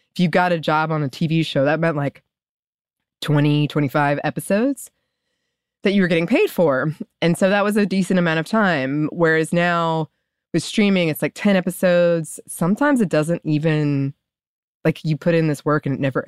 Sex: female